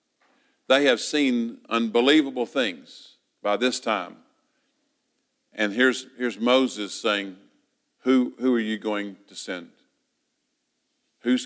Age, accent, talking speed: 50-69, American, 110 wpm